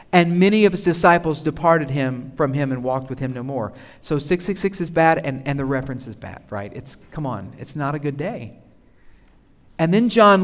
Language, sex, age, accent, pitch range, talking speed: English, male, 50-69, American, 135-190 Hz, 215 wpm